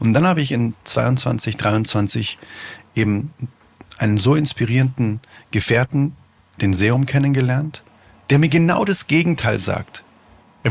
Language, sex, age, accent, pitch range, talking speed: German, male, 40-59, German, 105-140 Hz, 125 wpm